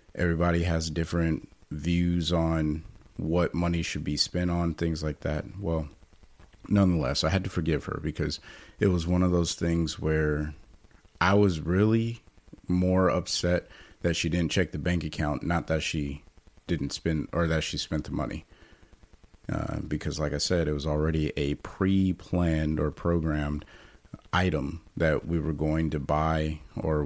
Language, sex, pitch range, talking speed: English, male, 80-95 Hz, 160 wpm